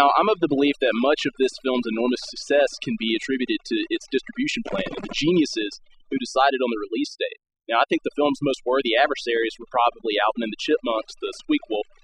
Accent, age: American, 30-49